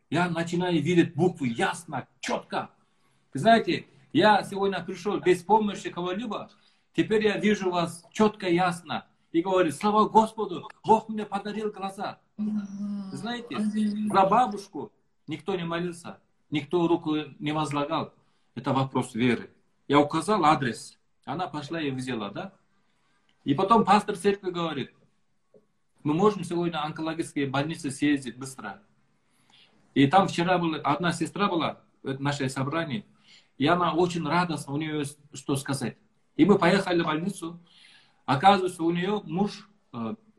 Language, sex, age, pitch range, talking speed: Russian, male, 50-69, 150-195 Hz, 130 wpm